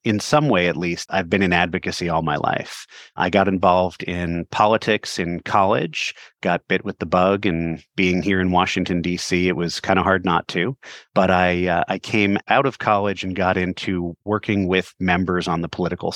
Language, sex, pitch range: English, male, 90-100 Hz